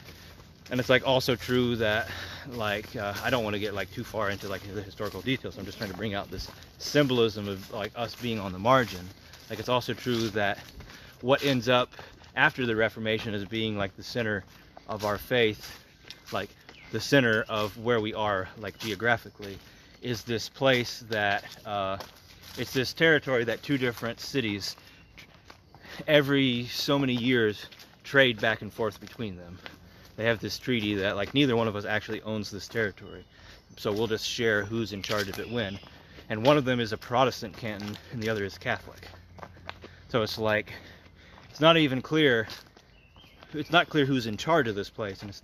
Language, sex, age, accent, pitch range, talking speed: English, male, 30-49, American, 100-120 Hz, 185 wpm